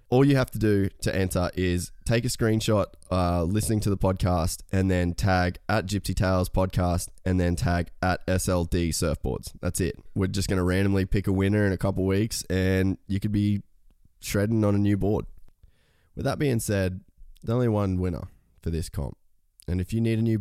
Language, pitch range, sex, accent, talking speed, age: English, 85-100 Hz, male, Australian, 205 wpm, 20-39